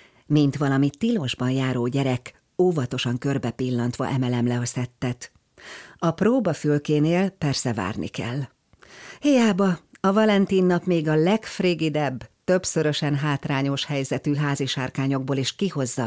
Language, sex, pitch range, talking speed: Hungarian, female, 125-170 Hz, 110 wpm